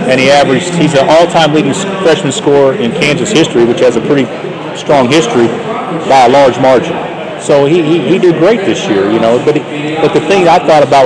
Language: English